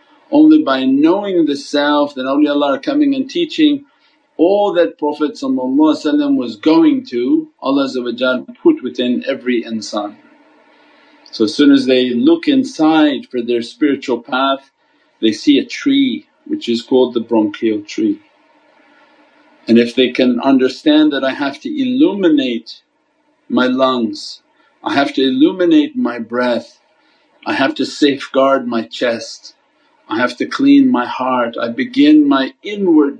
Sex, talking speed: male, 140 wpm